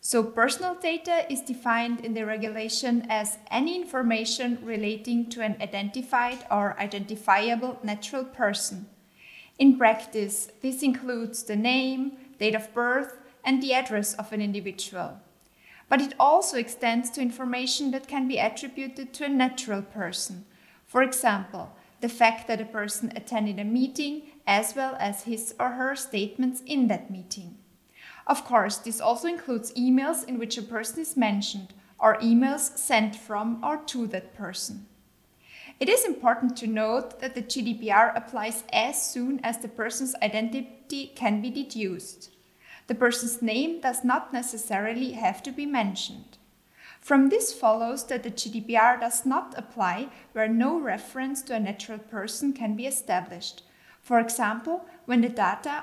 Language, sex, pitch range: English, female, 215-260 Hz